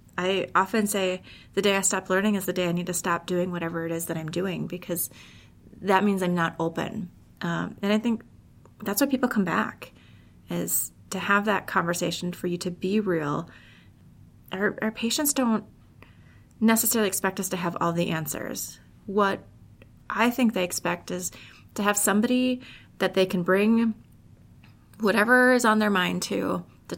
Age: 30-49